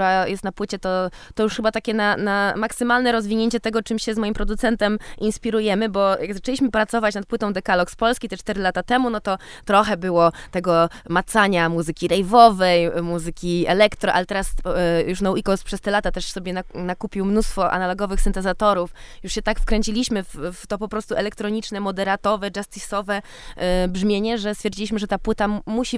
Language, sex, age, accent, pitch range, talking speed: Polish, female, 20-39, native, 180-220 Hz, 175 wpm